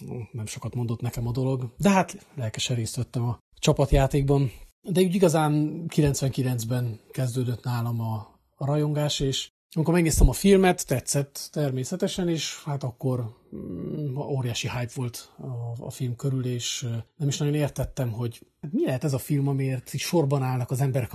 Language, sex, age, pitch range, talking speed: Hungarian, male, 30-49, 120-145 Hz, 150 wpm